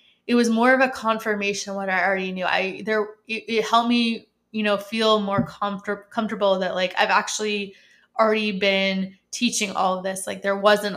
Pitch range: 190-220 Hz